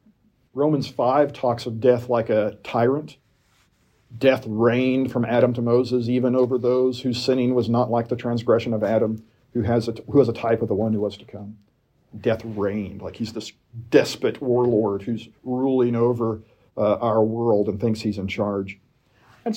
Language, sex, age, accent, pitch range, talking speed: English, male, 50-69, American, 110-130 Hz, 180 wpm